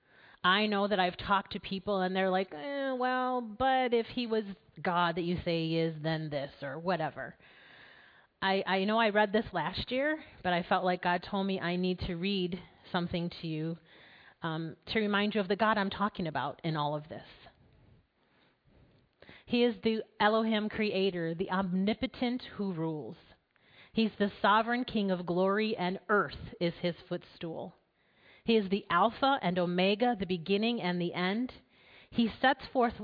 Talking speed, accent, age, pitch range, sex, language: 175 wpm, American, 30-49, 175-235 Hz, female, English